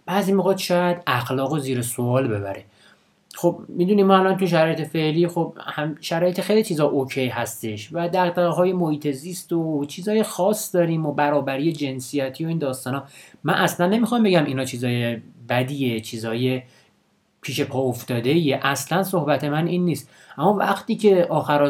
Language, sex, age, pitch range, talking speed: Persian, male, 30-49, 125-165 Hz, 160 wpm